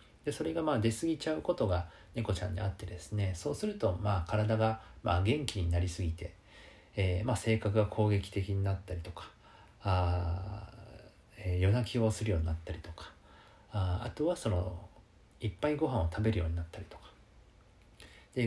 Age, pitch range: 40-59, 90-115 Hz